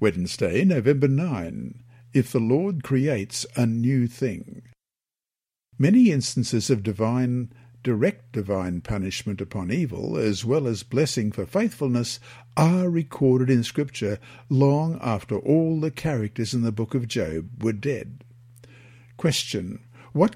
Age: 60-79